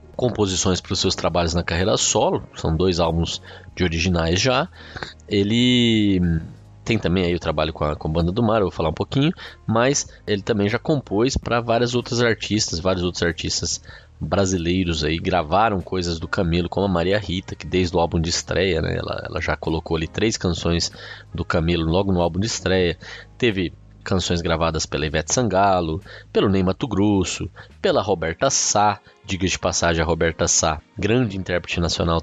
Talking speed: 180 wpm